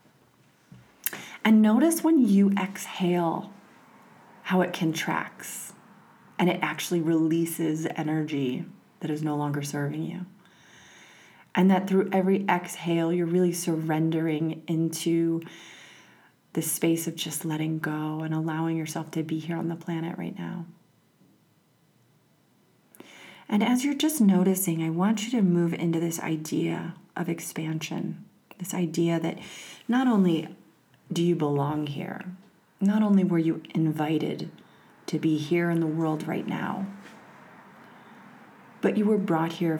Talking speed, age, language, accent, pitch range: 130 wpm, 30-49, English, American, 160-185 Hz